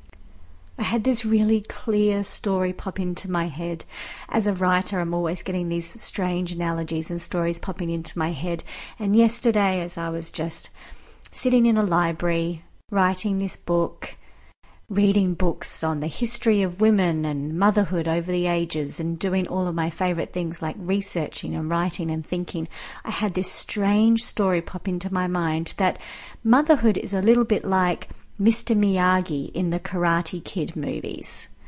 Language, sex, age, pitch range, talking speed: English, female, 40-59, 165-205 Hz, 165 wpm